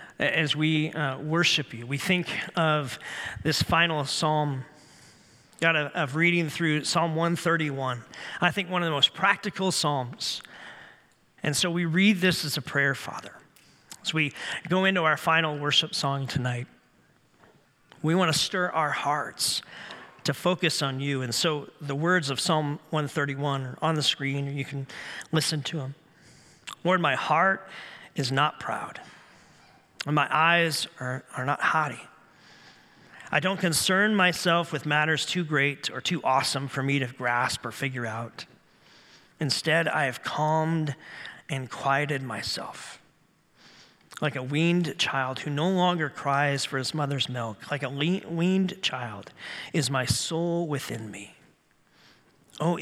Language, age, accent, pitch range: English, 40-59, American, 140-170 Hz